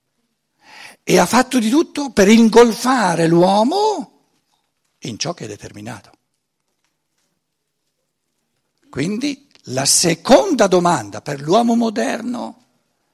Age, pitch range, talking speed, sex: 60-79, 140-230 Hz, 90 wpm, male